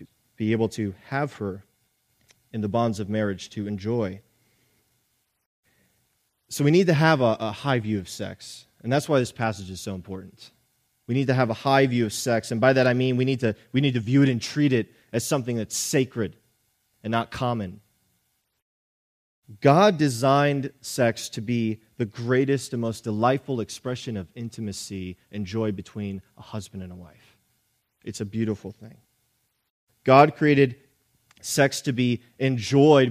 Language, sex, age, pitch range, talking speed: English, male, 30-49, 110-135 Hz, 170 wpm